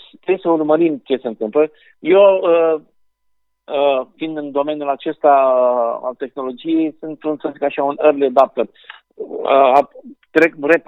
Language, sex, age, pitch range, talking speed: Romanian, male, 50-69, 130-165 Hz, 150 wpm